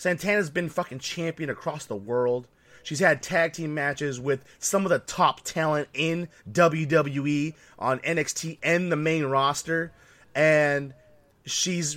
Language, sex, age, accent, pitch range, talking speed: English, male, 30-49, American, 125-165 Hz, 140 wpm